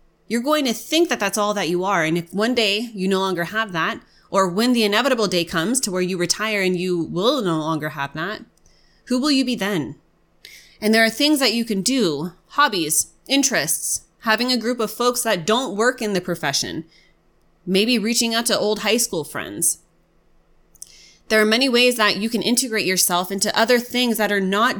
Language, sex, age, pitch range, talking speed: English, female, 20-39, 180-230 Hz, 205 wpm